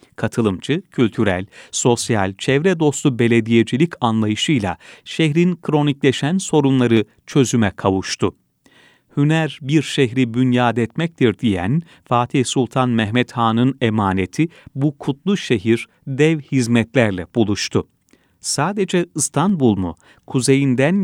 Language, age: Turkish, 40-59